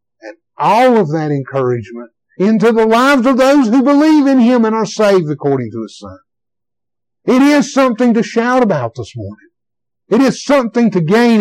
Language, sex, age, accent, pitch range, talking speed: English, male, 60-79, American, 145-245 Hz, 175 wpm